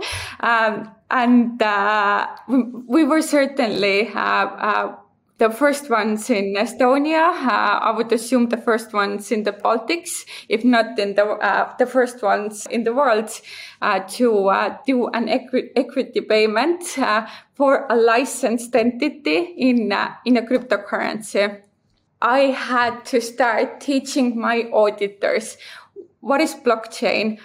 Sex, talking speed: female, 135 wpm